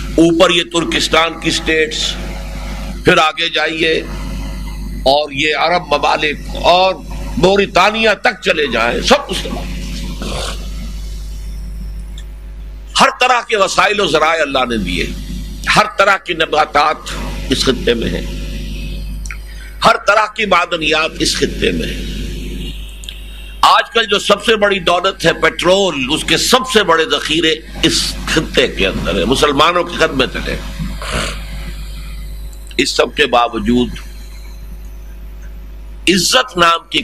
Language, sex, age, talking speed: Urdu, male, 60-79, 125 wpm